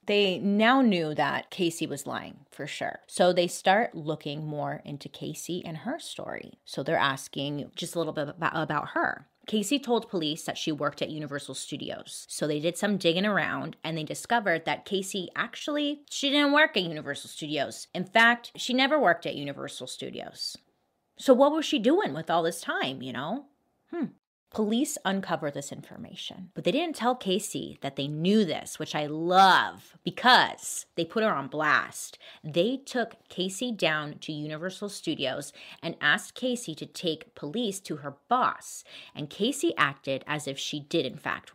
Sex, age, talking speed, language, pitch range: female, 30-49, 180 wpm, English, 150-230 Hz